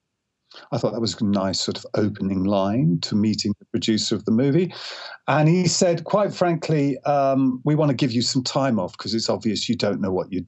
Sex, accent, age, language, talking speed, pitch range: male, British, 50-69, English, 225 wpm, 110-165 Hz